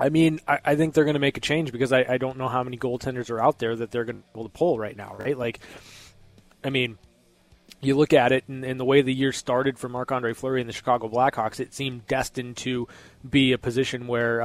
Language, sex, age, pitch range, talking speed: English, male, 20-39, 120-140 Hz, 245 wpm